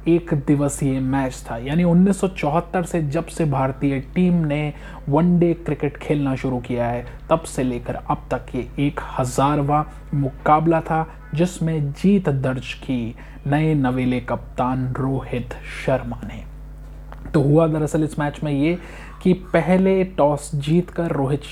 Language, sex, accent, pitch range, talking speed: Hindi, male, native, 135-165 Hz, 140 wpm